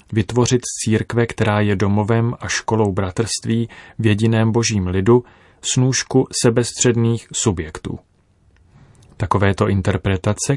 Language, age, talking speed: Czech, 30-49, 95 wpm